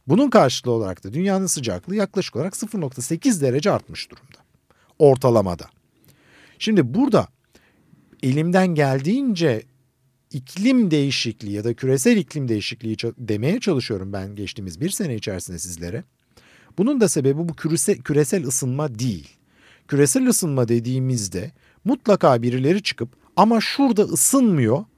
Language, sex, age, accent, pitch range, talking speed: Turkish, male, 50-69, native, 115-180 Hz, 120 wpm